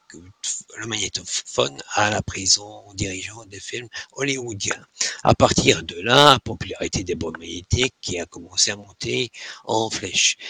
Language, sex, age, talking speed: French, male, 60-79, 145 wpm